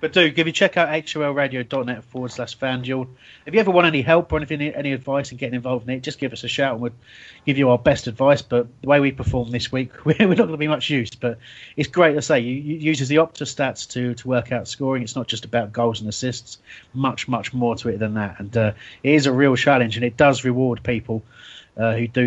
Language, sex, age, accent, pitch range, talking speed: English, male, 30-49, British, 110-135 Hz, 260 wpm